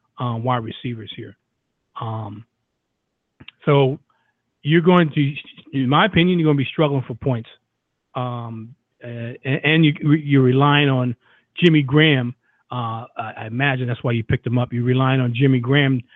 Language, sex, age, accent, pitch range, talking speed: English, male, 40-59, American, 120-145 Hz, 165 wpm